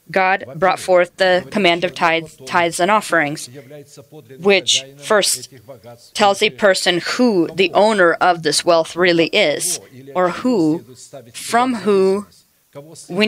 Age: 30-49